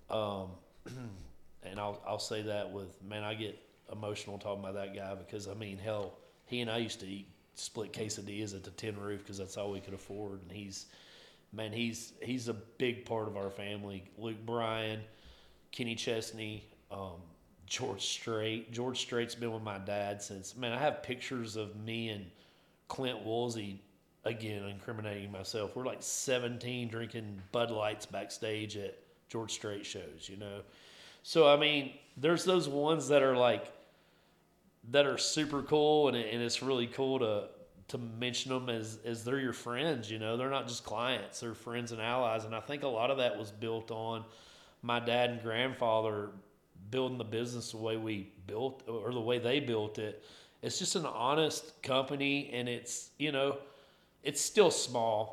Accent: American